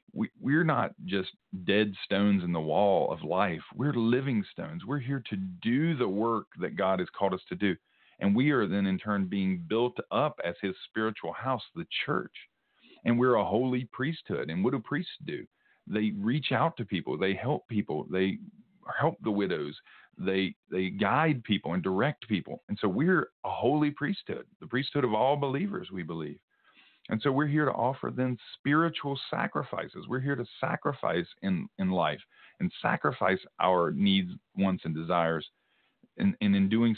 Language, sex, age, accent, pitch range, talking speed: English, male, 40-59, American, 95-145 Hz, 180 wpm